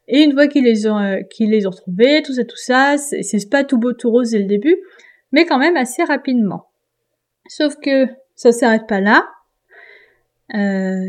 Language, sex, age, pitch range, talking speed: French, female, 20-39, 220-295 Hz, 195 wpm